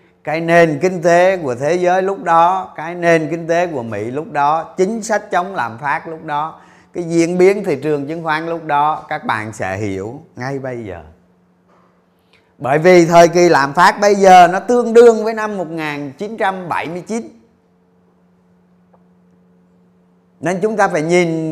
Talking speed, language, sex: 165 wpm, Vietnamese, male